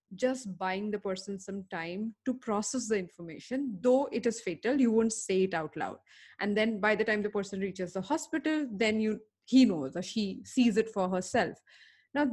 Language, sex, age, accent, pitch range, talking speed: English, female, 20-39, Indian, 190-250 Hz, 200 wpm